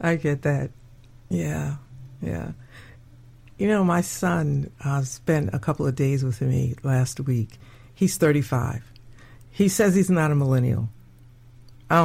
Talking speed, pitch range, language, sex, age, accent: 140 wpm, 120-170 Hz, English, female, 50-69, American